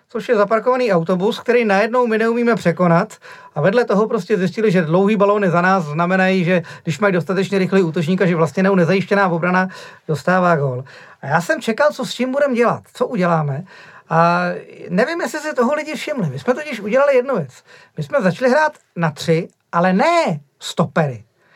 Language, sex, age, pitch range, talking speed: Czech, male, 40-59, 175-250 Hz, 185 wpm